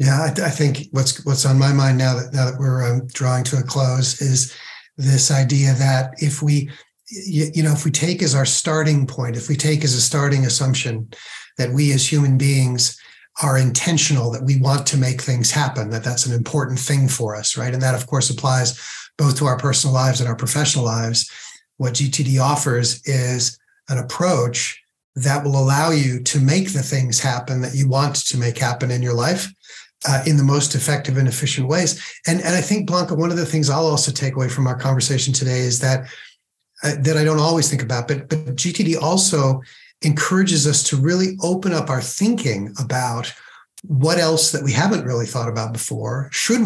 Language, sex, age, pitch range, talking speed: English, male, 50-69, 130-150 Hz, 200 wpm